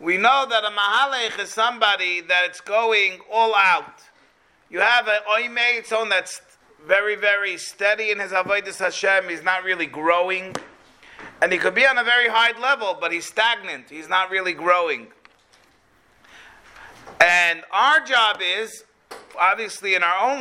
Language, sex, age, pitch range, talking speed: English, male, 40-59, 180-240 Hz, 155 wpm